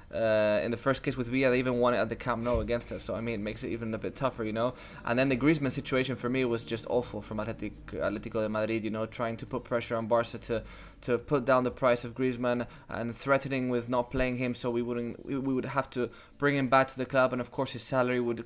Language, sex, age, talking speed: English, male, 20-39, 275 wpm